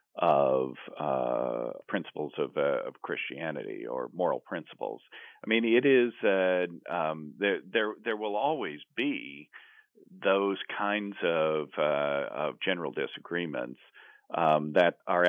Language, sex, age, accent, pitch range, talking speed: English, male, 50-69, American, 80-115 Hz, 125 wpm